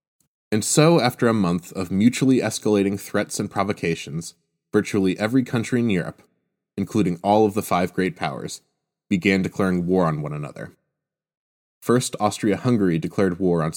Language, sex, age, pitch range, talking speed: English, male, 20-39, 85-105 Hz, 150 wpm